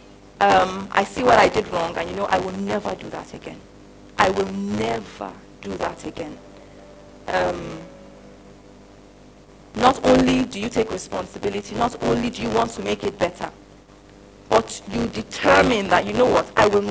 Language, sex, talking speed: English, female, 165 wpm